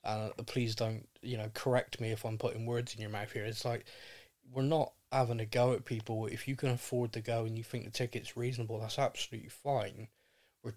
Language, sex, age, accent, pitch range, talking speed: English, male, 20-39, British, 115-135 Hz, 225 wpm